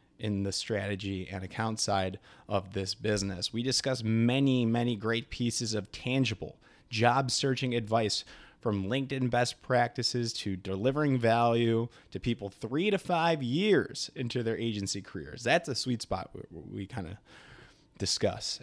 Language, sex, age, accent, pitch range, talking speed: English, male, 30-49, American, 100-130 Hz, 145 wpm